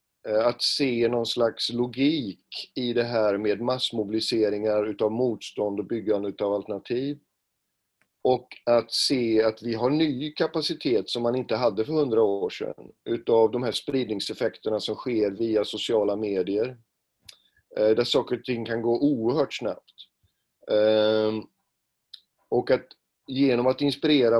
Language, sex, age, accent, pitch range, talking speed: Swedish, male, 40-59, native, 110-135 Hz, 135 wpm